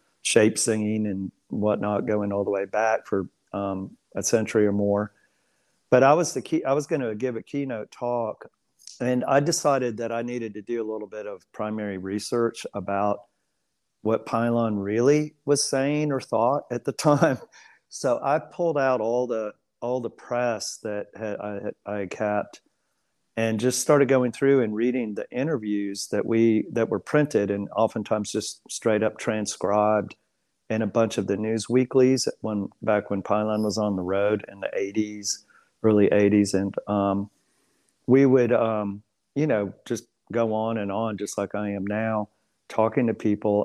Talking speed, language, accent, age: 175 wpm, English, American, 50-69